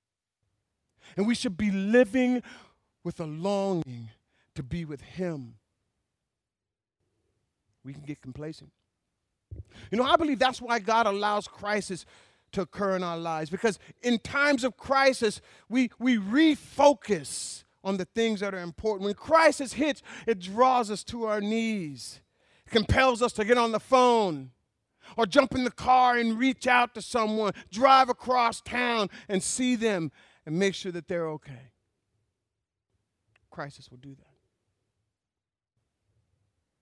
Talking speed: 140 wpm